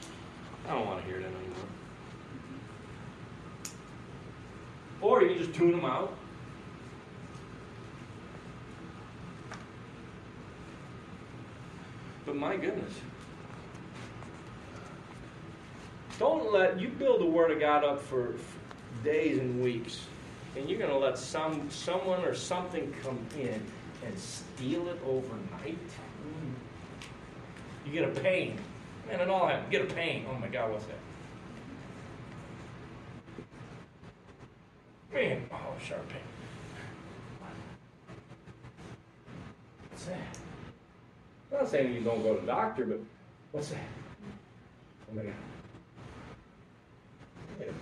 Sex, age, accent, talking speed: male, 40-59, American, 105 wpm